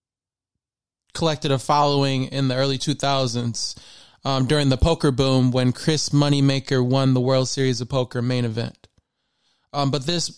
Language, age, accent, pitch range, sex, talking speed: English, 20-39, American, 130-145 Hz, male, 150 wpm